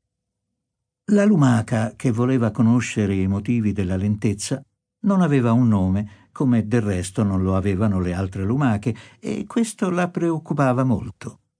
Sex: male